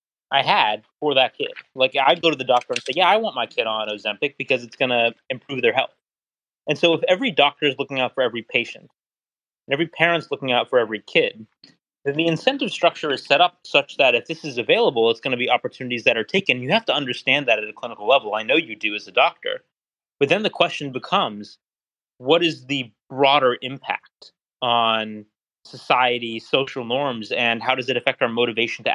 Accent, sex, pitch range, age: American, male, 110-145 Hz, 30-49